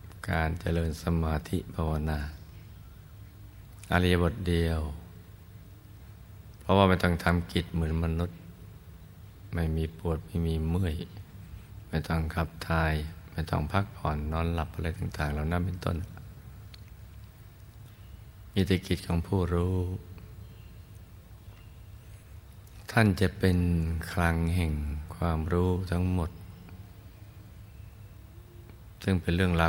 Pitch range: 80-100 Hz